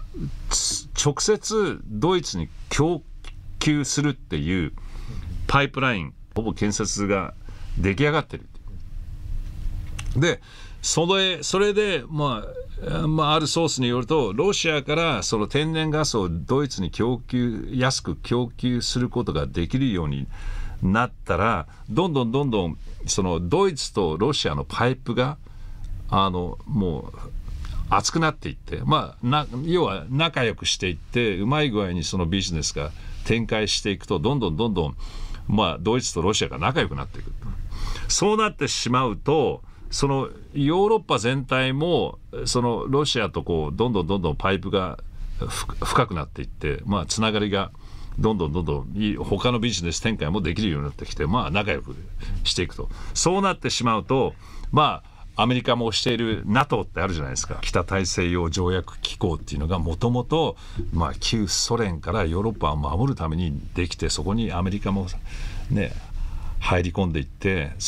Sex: male